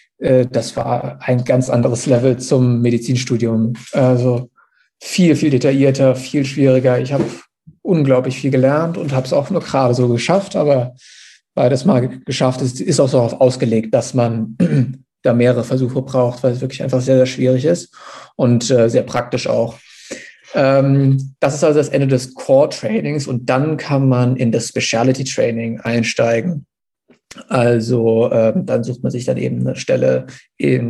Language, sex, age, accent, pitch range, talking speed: German, male, 50-69, German, 120-135 Hz, 155 wpm